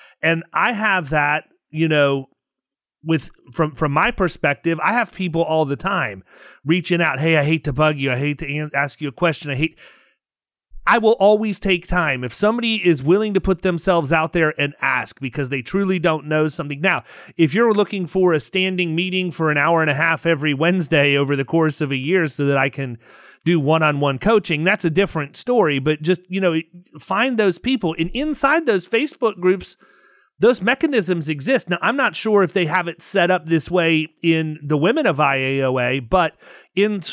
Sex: male